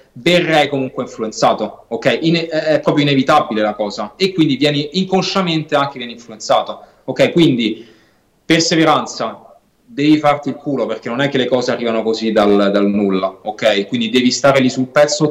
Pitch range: 115-145 Hz